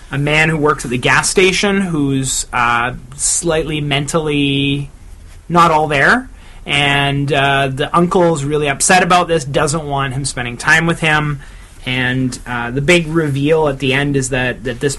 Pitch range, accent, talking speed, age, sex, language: 125-155 Hz, American, 170 wpm, 30-49, male, English